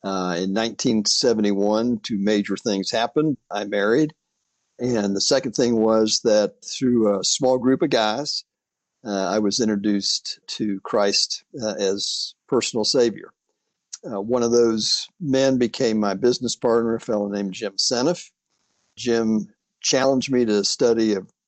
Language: English